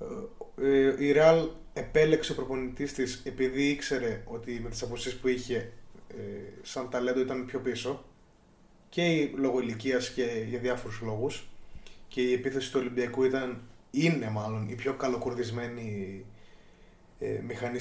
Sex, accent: male, native